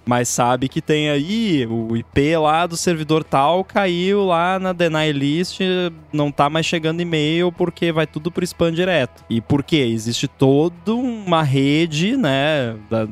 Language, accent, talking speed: Portuguese, Brazilian, 165 wpm